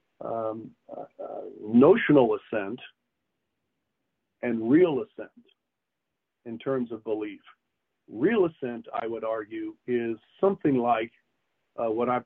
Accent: American